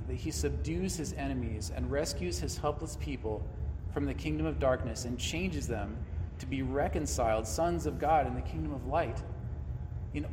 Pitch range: 80-95 Hz